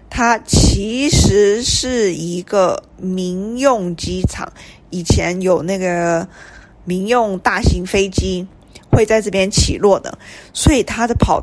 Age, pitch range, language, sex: 20-39, 175-225 Hz, Chinese, female